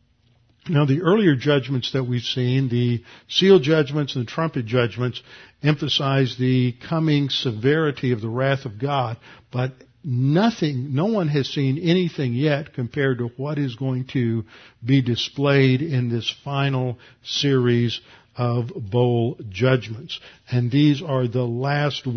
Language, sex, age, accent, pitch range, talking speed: English, male, 50-69, American, 125-145 Hz, 140 wpm